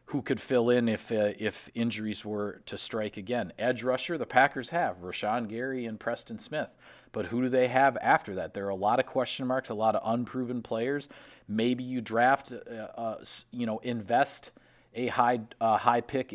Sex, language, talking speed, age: male, English, 200 wpm, 40-59